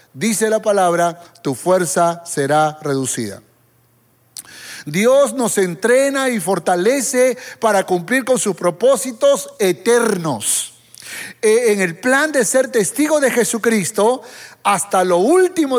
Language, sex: Spanish, male